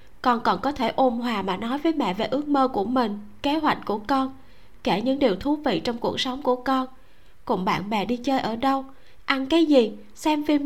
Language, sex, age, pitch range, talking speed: Vietnamese, female, 20-39, 240-300 Hz, 230 wpm